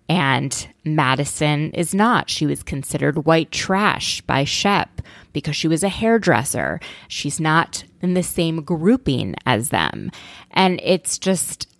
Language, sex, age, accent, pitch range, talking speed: English, female, 20-39, American, 150-180 Hz, 135 wpm